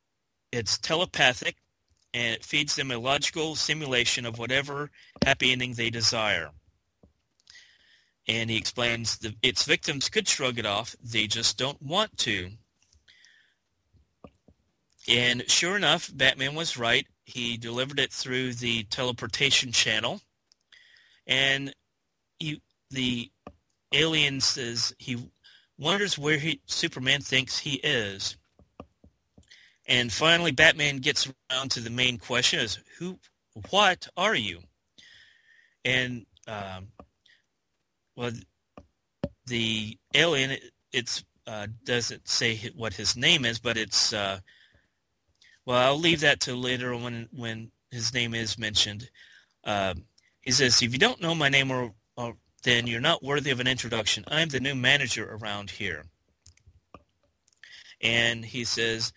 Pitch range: 110-135 Hz